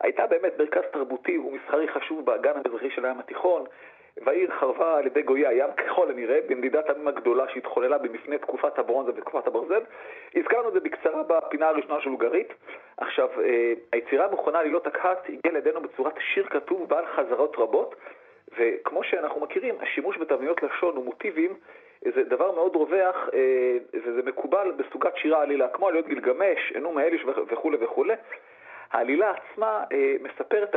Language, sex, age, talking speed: Hebrew, male, 40-59, 135 wpm